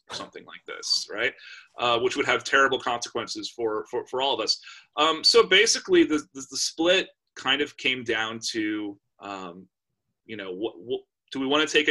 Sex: male